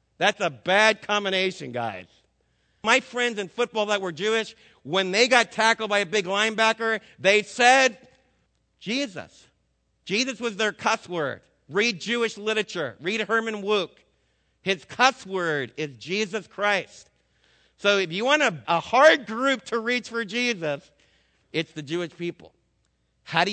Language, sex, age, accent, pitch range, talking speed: English, male, 50-69, American, 165-225 Hz, 150 wpm